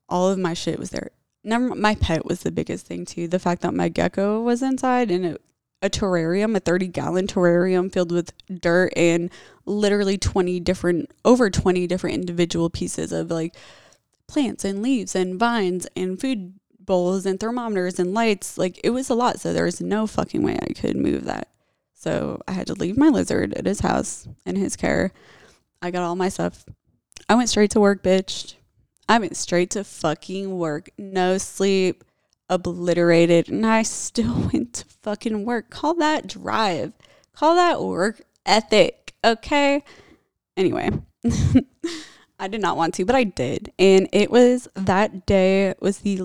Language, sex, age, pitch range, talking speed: English, female, 20-39, 175-215 Hz, 175 wpm